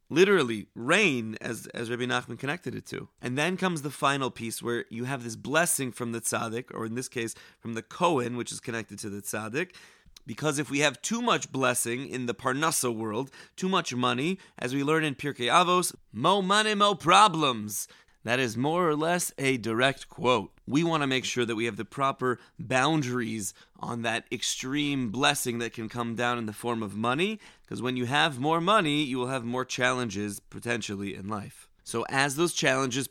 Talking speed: 200 wpm